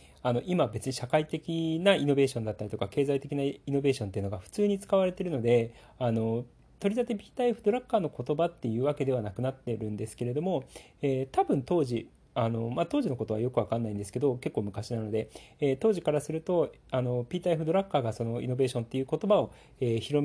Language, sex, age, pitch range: Japanese, male, 40-59, 115-190 Hz